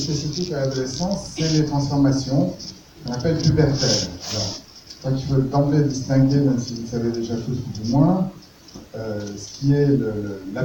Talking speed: 175 wpm